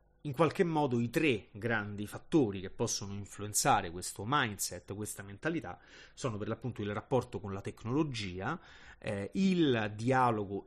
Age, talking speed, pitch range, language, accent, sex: 30-49, 140 wpm, 100-120 Hz, Italian, native, male